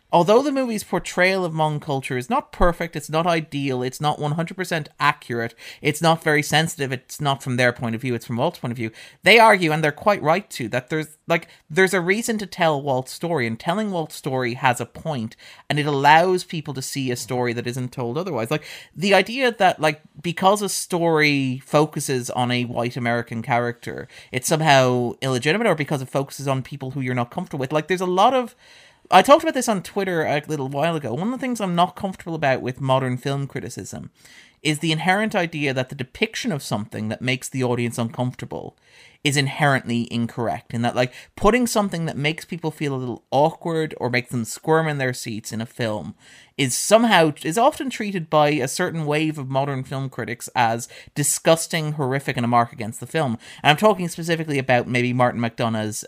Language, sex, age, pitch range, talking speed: English, male, 30-49, 125-170 Hz, 210 wpm